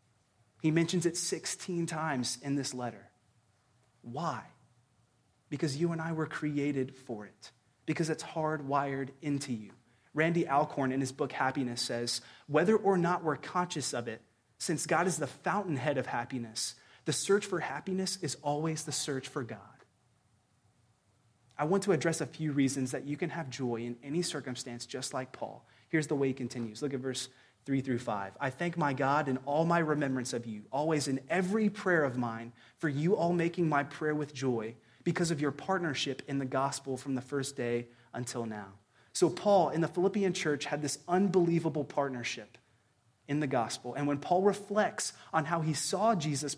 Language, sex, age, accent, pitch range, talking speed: English, male, 30-49, American, 120-165 Hz, 180 wpm